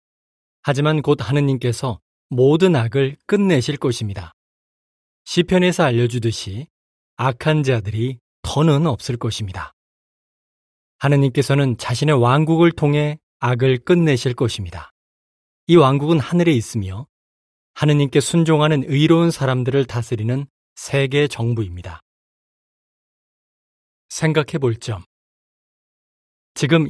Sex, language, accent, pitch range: male, Korean, native, 115-155 Hz